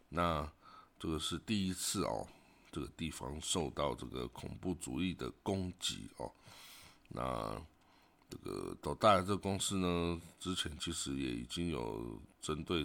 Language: Chinese